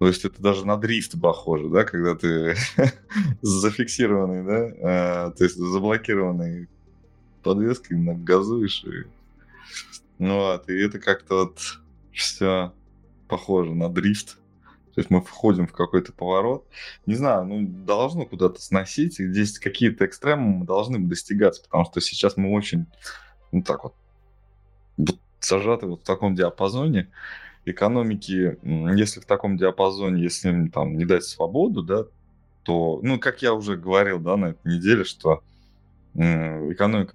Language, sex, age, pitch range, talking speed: Russian, male, 20-39, 85-105 Hz, 135 wpm